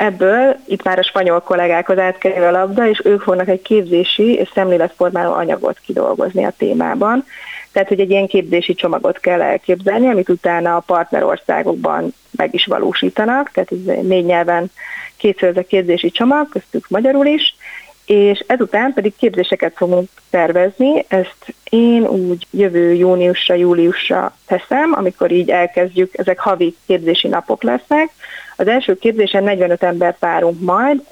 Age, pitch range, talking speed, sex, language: 30-49, 180-220 Hz, 145 wpm, female, Hungarian